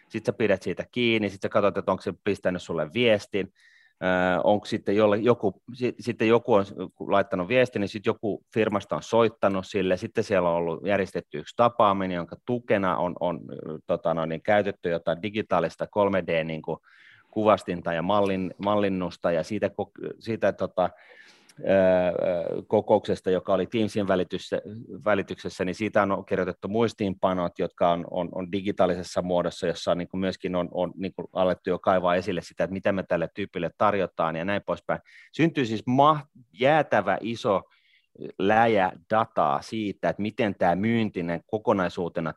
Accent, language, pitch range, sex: native, Finnish, 90-110 Hz, male